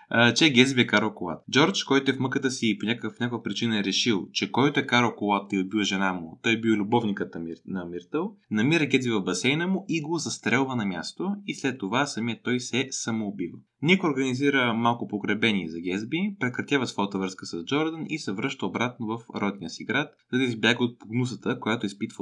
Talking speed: 200 wpm